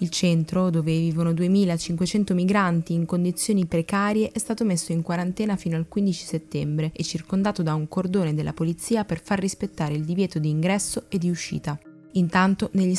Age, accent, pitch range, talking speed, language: 20-39, native, 165-205 Hz, 170 wpm, Italian